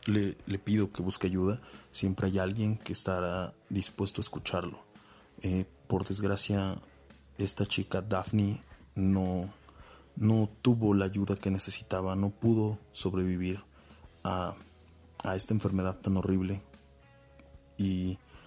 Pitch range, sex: 90-105 Hz, male